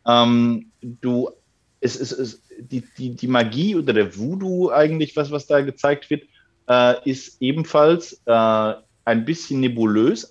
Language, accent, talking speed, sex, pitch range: German, German, 145 wpm, male, 115-140 Hz